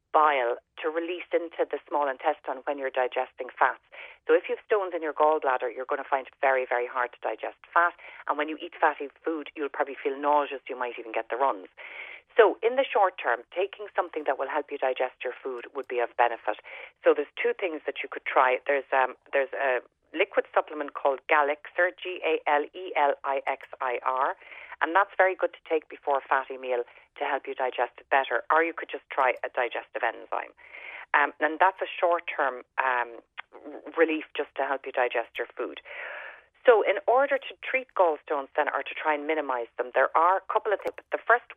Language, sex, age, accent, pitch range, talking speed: English, female, 40-59, Irish, 135-185 Hz, 215 wpm